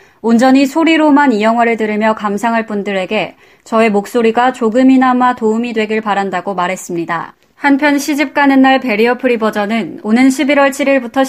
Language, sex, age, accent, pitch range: Korean, female, 20-39, native, 215-275 Hz